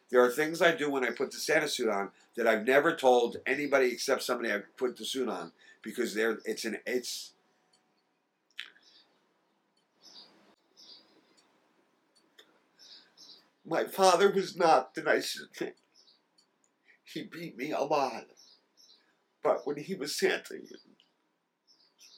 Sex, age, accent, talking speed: male, 50-69, American, 125 wpm